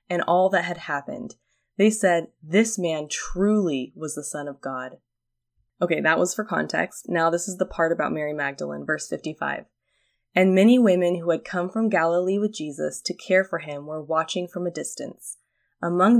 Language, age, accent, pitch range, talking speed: English, 20-39, American, 150-185 Hz, 185 wpm